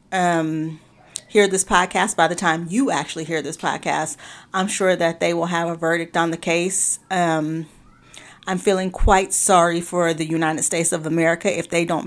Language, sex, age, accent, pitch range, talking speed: English, female, 40-59, American, 170-200 Hz, 185 wpm